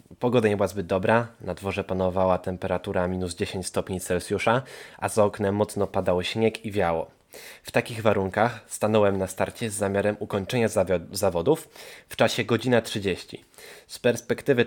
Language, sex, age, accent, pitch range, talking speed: Polish, male, 20-39, native, 100-125 Hz, 150 wpm